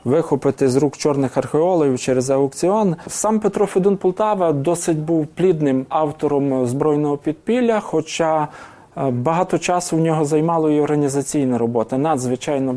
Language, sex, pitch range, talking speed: English, male, 145-180 Hz, 125 wpm